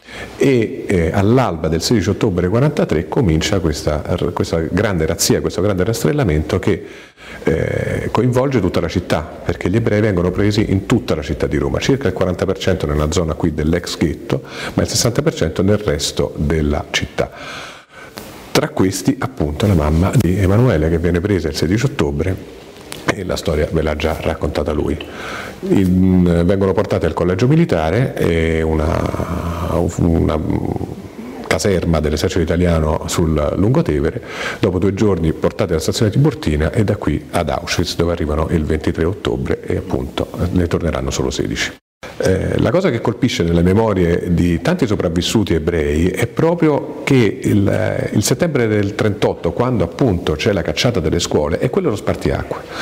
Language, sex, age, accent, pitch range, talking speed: Italian, male, 50-69, native, 80-120 Hz, 155 wpm